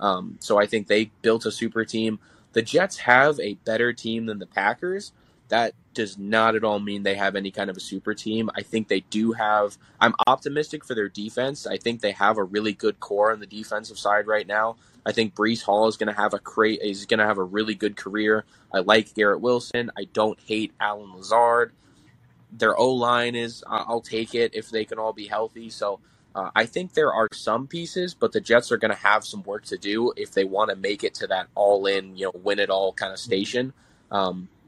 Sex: male